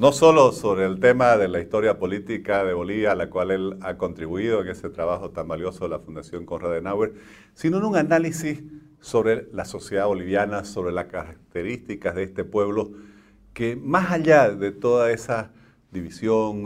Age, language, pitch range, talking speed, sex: 50-69, Spanish, 95-115 Hz, 175 wpm, male